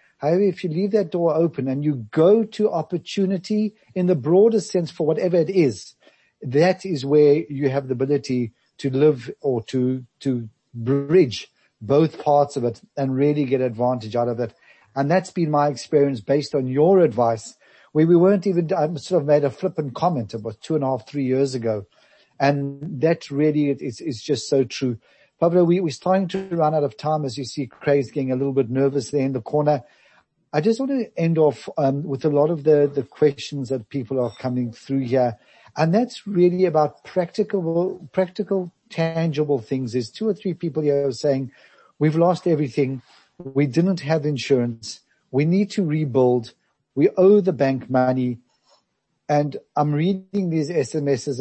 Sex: male